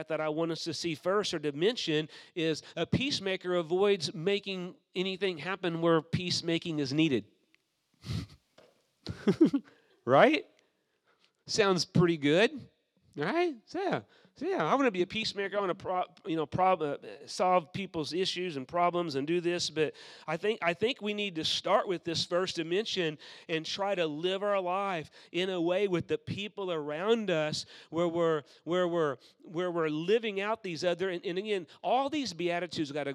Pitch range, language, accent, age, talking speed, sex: 155-195 Hz, English, American, 40-59, 170 wpm, male